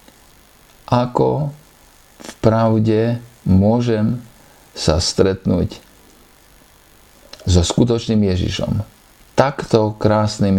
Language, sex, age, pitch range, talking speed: Slovak, male, 50-69, 100-125 Hz, 60 wpm